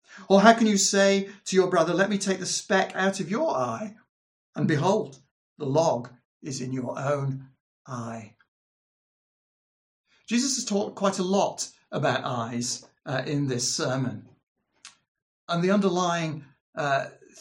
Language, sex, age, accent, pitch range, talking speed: English, male, 60-79, British, 120-160 Hz, 145 wpm